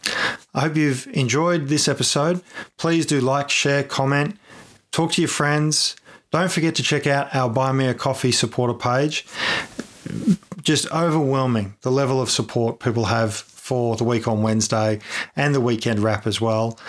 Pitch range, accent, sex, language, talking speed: 115-140 Hz, Australian, male, English, 165 wpm